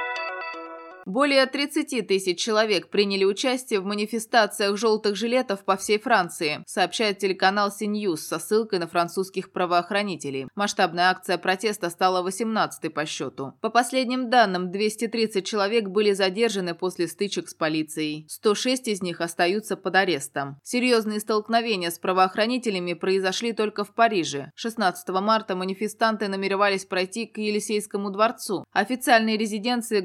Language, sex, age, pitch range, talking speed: Russian, female, 20-39, 175-220 Hz, 125 wpm